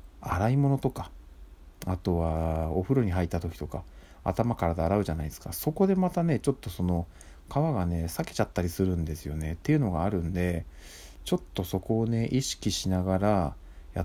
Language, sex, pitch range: Japanese, male, 80-100 Hz